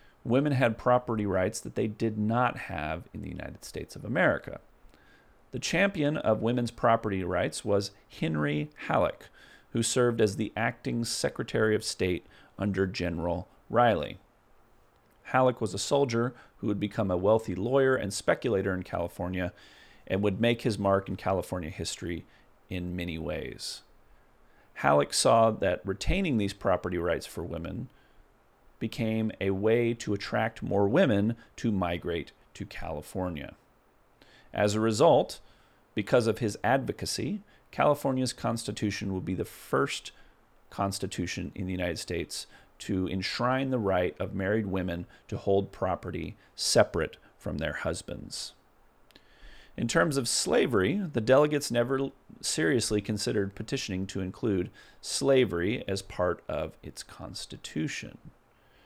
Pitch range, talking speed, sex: 95-115 Hz, 135 wpm, male